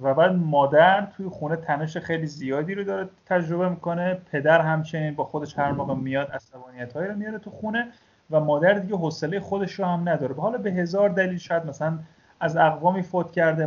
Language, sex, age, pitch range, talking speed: Persian, male, 30-49, 145-185 Hz, 190 wpm